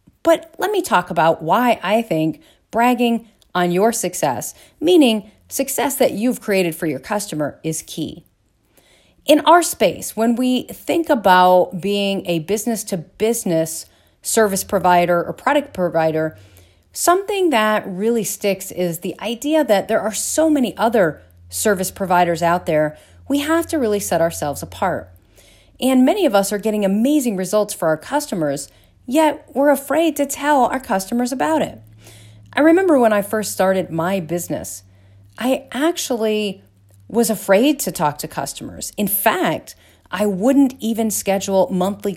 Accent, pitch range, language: American, 165-235 Hz, English